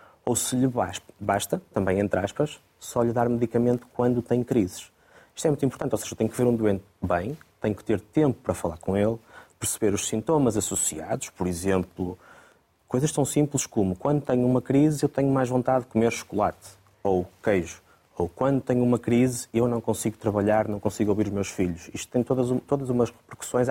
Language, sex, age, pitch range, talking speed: Portuguese, male, 20-39, 100-125 Hz, 195 wpm